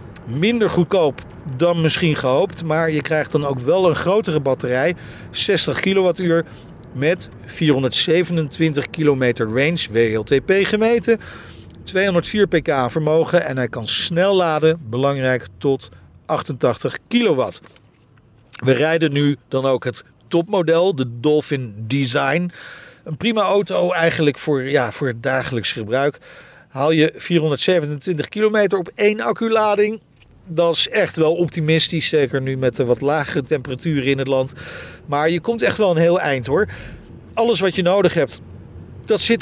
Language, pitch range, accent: Dutch, 135-185 Hz, Dutch